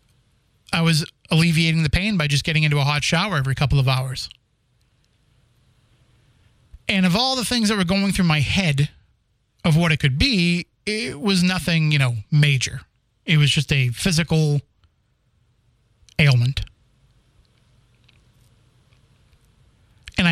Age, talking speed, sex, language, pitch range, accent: 30-49, 135 wpm, male, English, 120-170 Hz, American